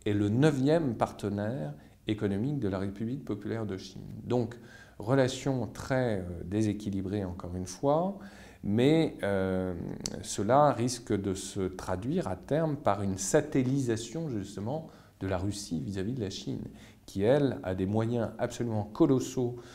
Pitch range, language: 95-135 Hz, French